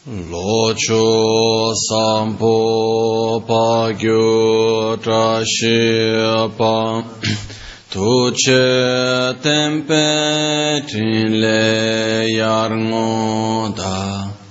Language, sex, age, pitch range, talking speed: Italian, male, 30-49, 110-130 Hz, 40 wpm